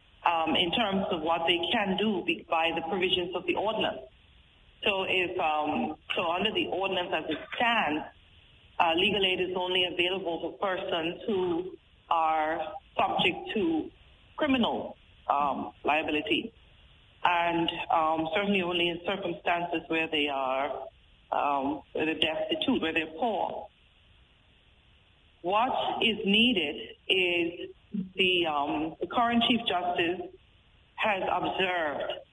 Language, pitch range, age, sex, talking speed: English, 165-215 Hz, 40-59, female, 125 wpm